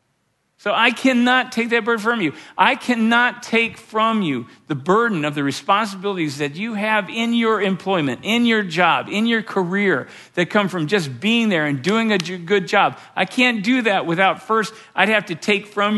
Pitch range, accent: 175-225 Hz, American